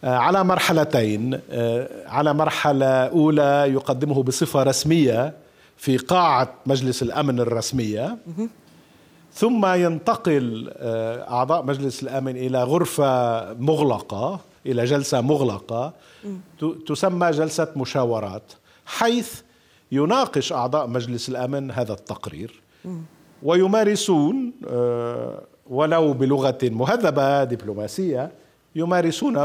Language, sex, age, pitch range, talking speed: Arabic, male, 50-69, 125-170 Hz, 80 wpm